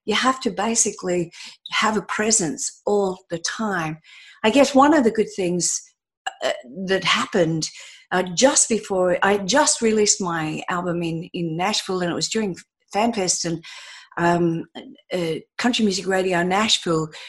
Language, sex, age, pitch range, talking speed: English, female, 50-69, 170-220 Hz, 155 wpm